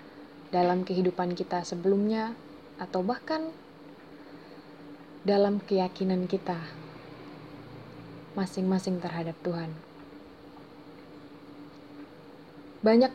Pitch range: 170-205 Hz